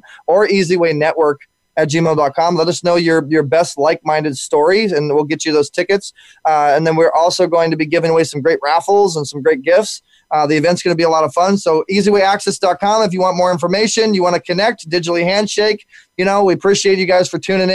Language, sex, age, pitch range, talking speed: English, male, 20-39, 155-185 Hz, 225 wpm